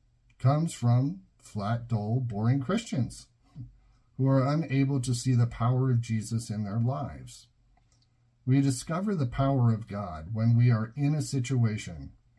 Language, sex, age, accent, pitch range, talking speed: English, male, 50-69, American, 115-130 Hz, 145 wpm